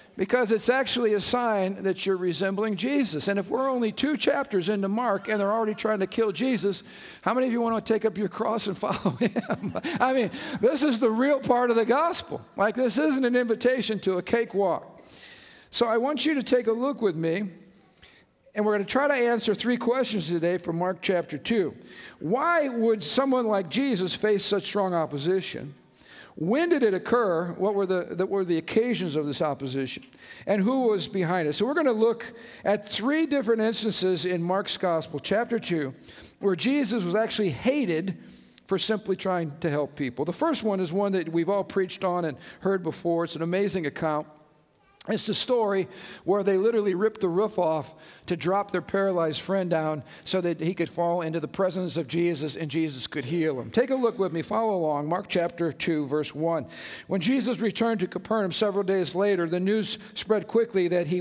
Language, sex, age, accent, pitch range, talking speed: English, male, 50-69, American, 175-230 Hz, 200 wpm